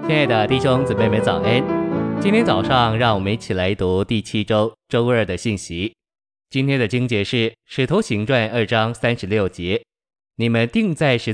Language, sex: Chinese, male